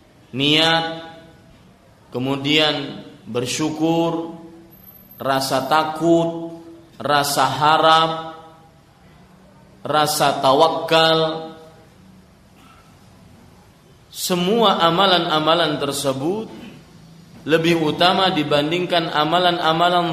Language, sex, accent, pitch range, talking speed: Indonesian, male, native, 150-170 Hz, 50 wpm